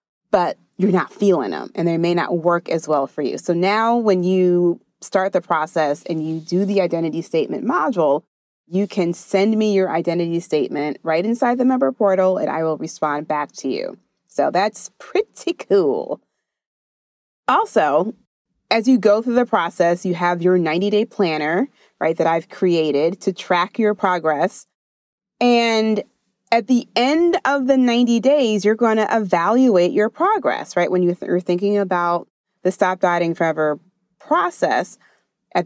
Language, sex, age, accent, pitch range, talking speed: English, female, 30-49, American, 170-220 Hz, 165 wpm